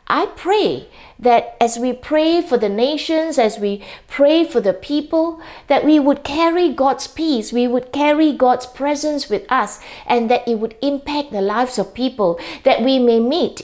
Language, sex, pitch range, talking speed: English, female, 200-280 Hz, 180 wpm